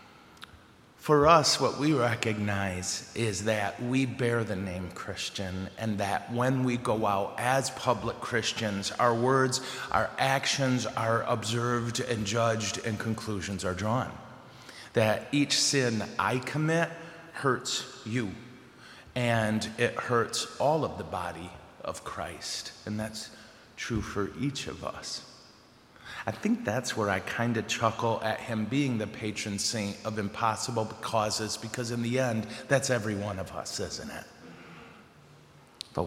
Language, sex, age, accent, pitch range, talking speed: English, male, 30-49, American, 100-120 Hz, 140 wpm